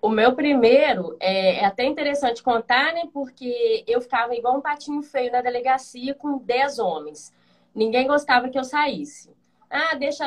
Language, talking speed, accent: Portuguese, 160 wpm, Brazilian